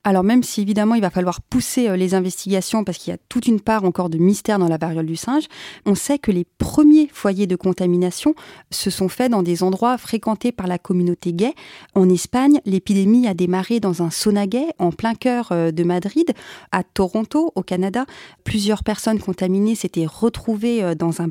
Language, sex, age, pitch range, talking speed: French, female, 30-49, 180-235 Hz, 195 wpm